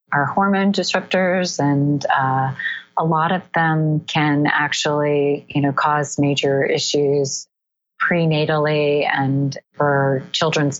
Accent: American